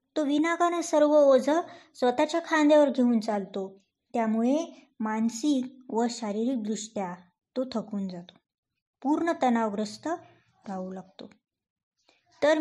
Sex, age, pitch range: male, 20-39, 225-300 Hz